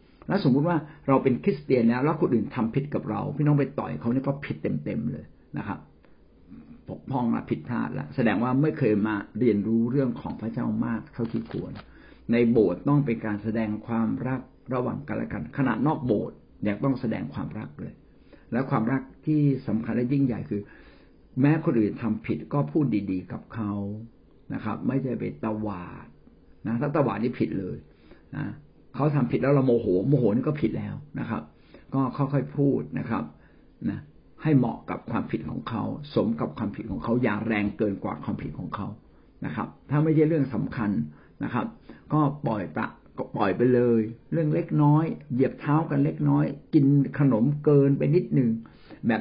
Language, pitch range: Thai, 115-145 Hz